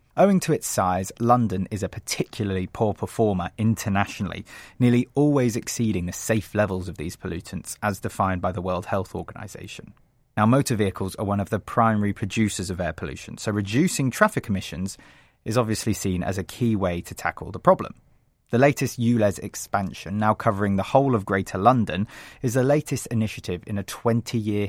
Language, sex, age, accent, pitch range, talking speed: English, male, 30-49, British, 95-120 Hz, 175 wpm